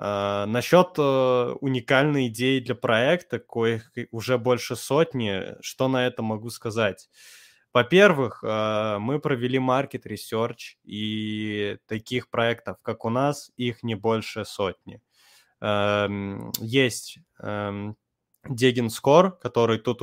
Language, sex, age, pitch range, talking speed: Russian, male, 20-39, 105-125 Hz, 115 wpm